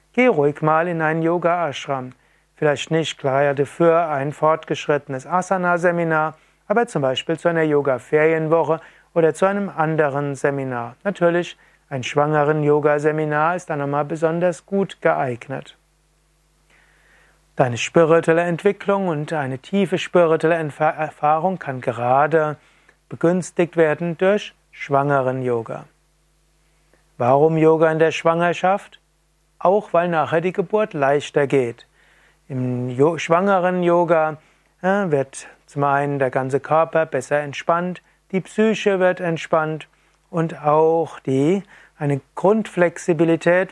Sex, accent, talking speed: male, German, 115 wpm